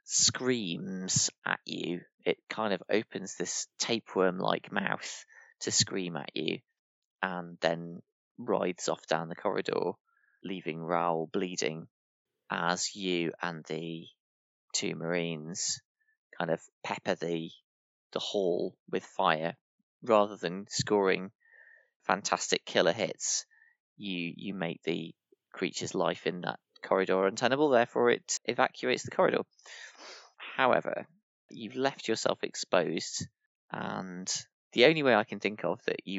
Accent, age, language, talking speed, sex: British, 20-39, English, 125 wpm, male